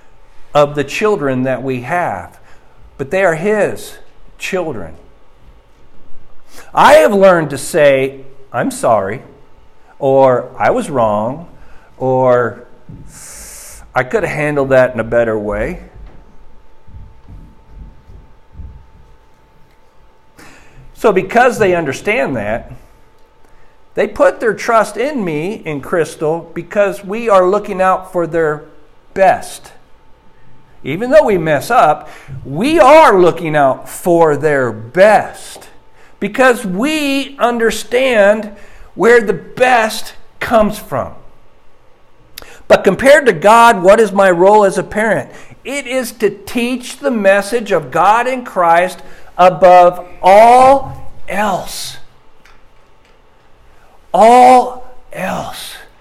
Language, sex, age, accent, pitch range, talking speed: English, male, 50-69, American, 145-225 Hz, 105 wpm